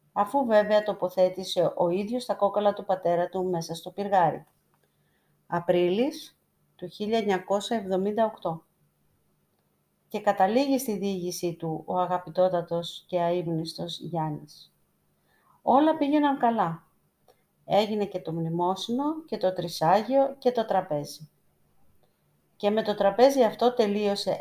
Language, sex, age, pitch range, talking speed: Greek, female, 40-59, 170-205 Hz, 110 wpm